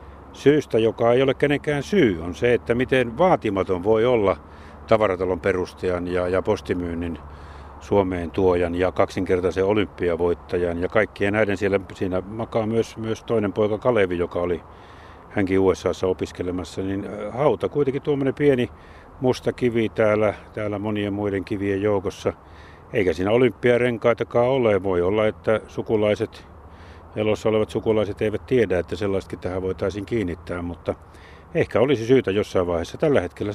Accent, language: native, Finnish